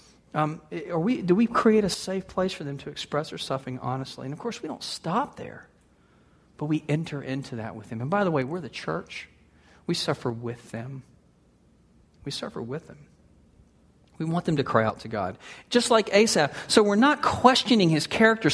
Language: English